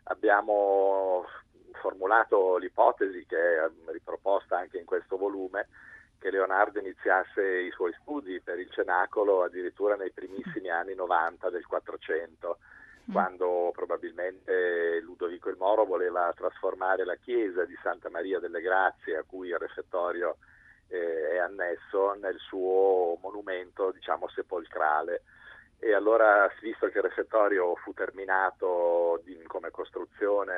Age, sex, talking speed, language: 50-69, male, 120 wpm, Italian